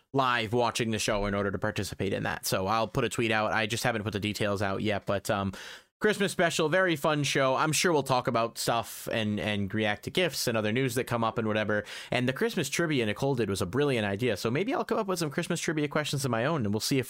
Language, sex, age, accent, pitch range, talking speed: English, male, 30-49, American, 105-135 Hz, 270 wpm